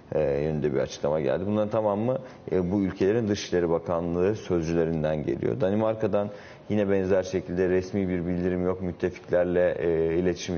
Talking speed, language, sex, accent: 135 wpm, Turkish, male, native